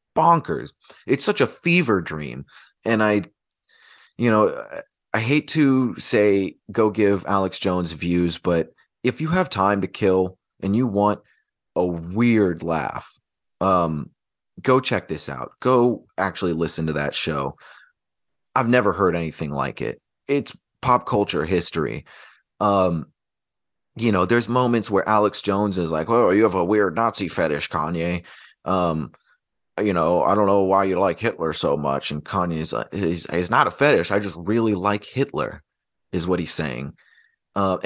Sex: male